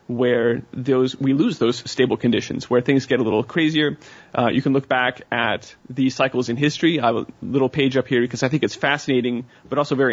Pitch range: 120-135 Hz